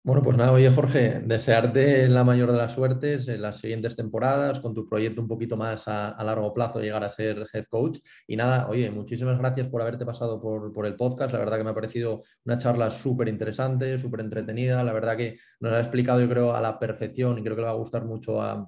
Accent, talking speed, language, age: Spanish, 235 wpm, Spanish, 20-39